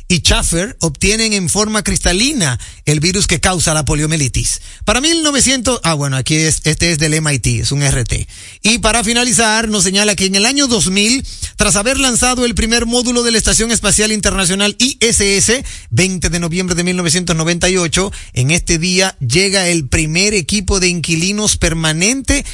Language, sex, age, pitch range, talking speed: Spanish, male, 40-59, 155-210 Hz, 165 wpm